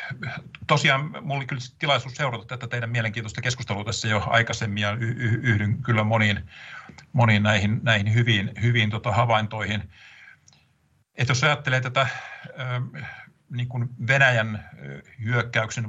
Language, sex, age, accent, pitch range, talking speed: Finnish, male, 50-69, native, 110-125 Hz, 120 wpm